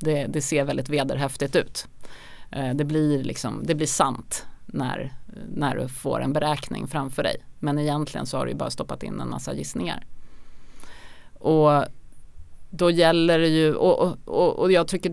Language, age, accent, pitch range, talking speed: Swedish, 30-49, native, 135-170 Hz, 160 wpm